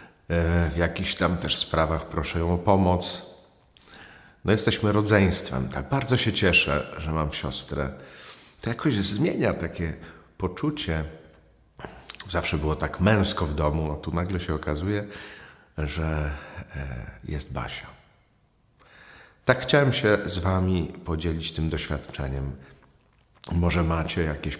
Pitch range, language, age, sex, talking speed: 75-95 Hz, Polish, 50-69, male, 120 wpm